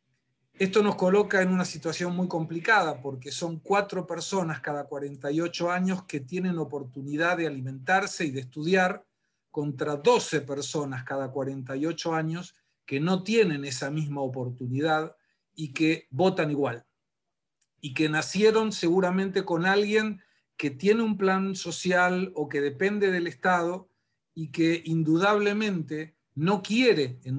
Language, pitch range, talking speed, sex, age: Spanish, 150-185 Hz, 135 wpm, male, 50-69